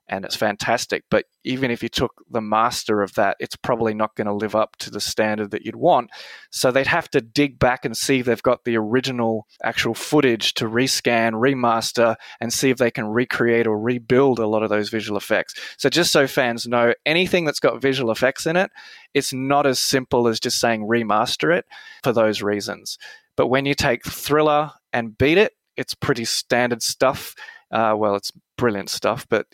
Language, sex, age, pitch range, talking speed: English, male, 20-39, 115-135 Hz, 200 wpm